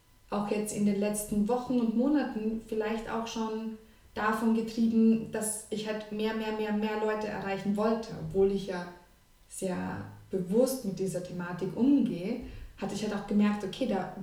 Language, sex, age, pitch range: English, female, 20-39, 185-220 Hz